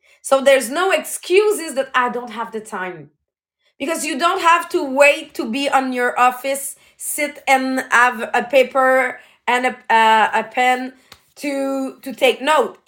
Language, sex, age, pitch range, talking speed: English, female, 30-49, 220-305 Hz, 160 wpm